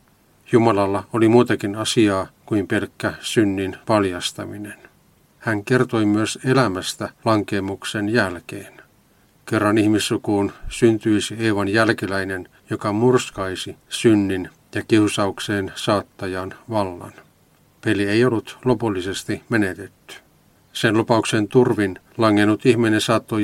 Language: Finnish